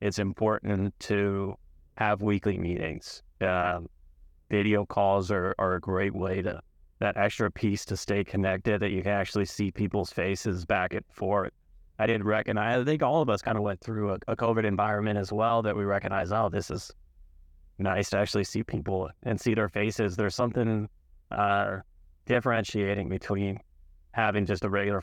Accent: American